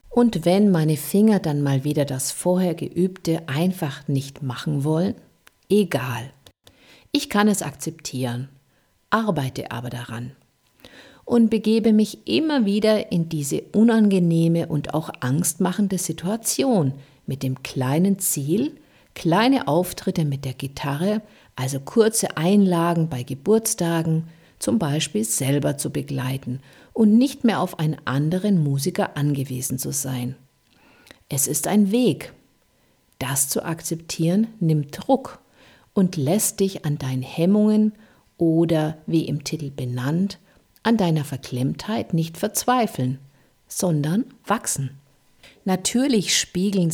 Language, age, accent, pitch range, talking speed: German, 50-69, German, 140-195 Hz, 120 wpm